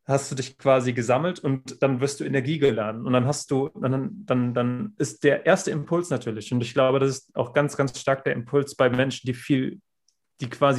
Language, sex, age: German, male, 30-49